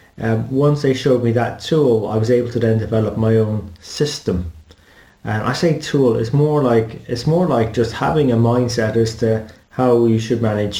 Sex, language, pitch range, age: male, English, 110-125 Hz, 30-49